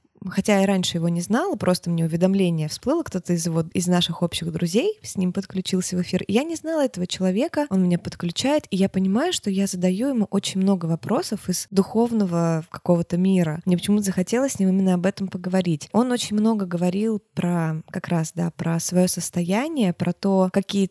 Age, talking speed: 20-39, 190 wpm